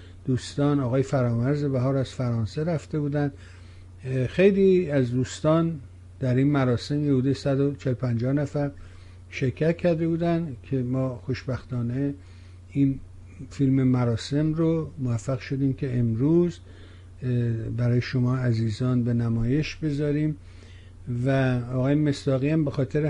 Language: Persian